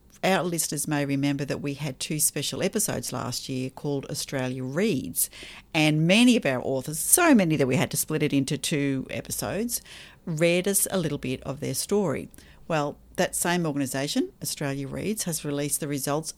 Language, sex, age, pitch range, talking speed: English, female, 50-69, 140-190 Hz, 180 wpm